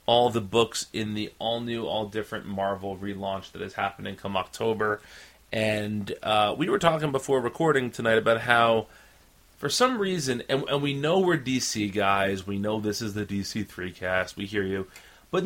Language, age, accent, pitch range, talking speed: English, 30-49, American, 100-130 Hz, 175 wpm